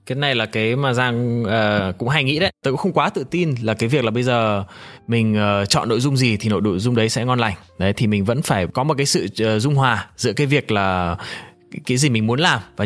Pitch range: 110-150 Hz